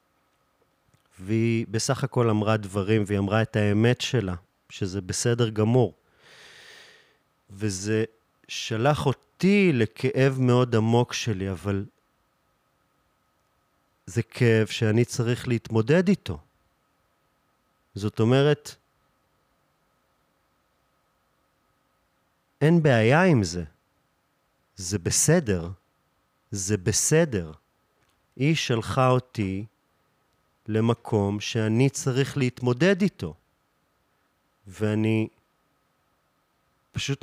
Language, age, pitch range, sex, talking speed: Hebrew, 40-59, 105-140 Hz, male, 75 wpm